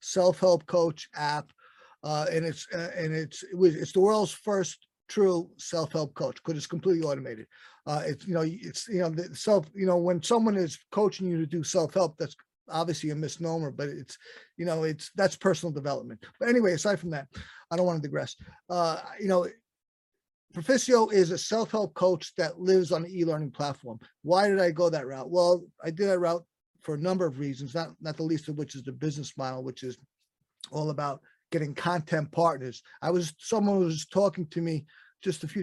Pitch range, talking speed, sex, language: 155-185 Hz, 200 wpm, male, English